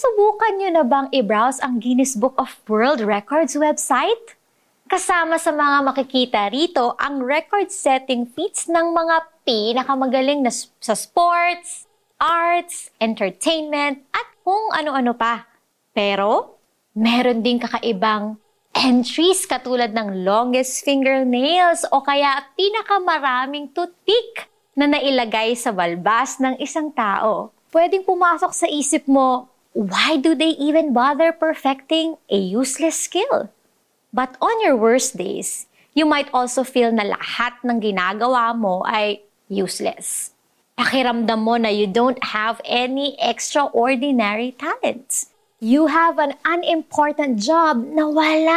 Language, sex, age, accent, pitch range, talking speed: Filipino, female, 20-39, native, 240-330 Hz, 120 wpm